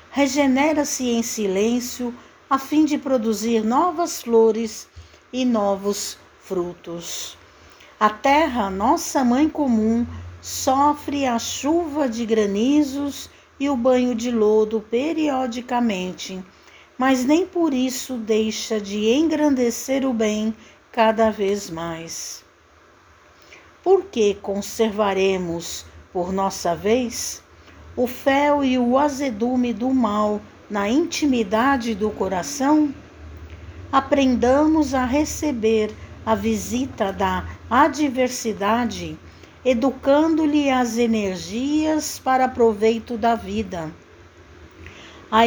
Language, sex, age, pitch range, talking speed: Portuguese, female, 60-79, 205-275 Hz, 95 wpm